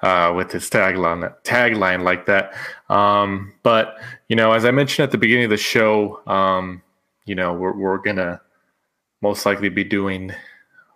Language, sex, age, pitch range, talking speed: English, male, 20-39, 95-115 Hz, 165 wpm